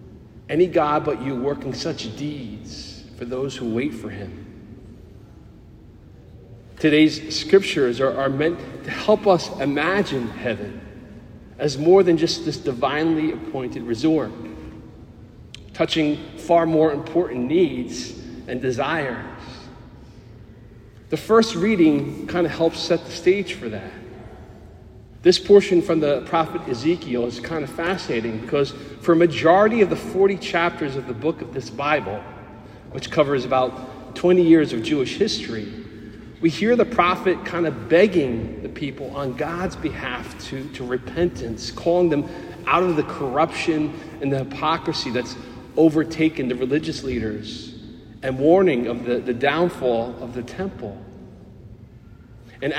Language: English